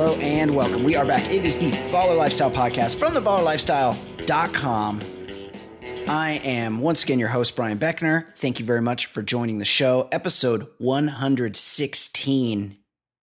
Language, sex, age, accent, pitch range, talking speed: English, male, 30-49, American, 105-135 Hz, 145 wpm